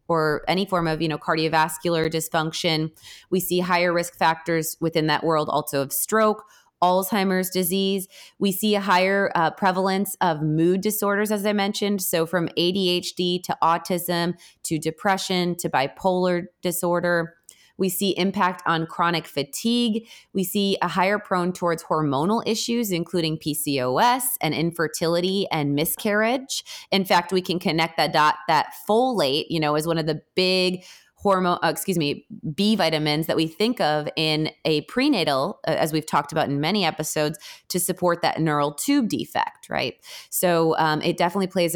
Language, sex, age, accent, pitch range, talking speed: English, female, 20-39, American, 155-190 Hz, 160 wpm